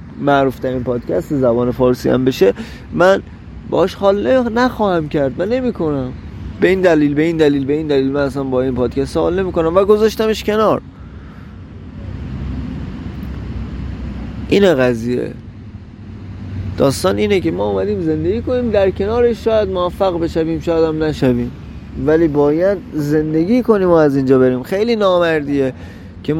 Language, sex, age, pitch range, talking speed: Persian, male, 30-49, 130-175 Hz, 140 wpm